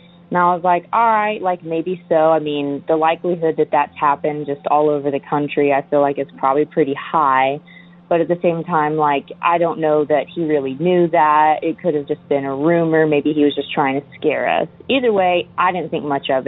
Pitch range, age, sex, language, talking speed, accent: 150-175 Hz, 20-39, female, English, 235 wpm, American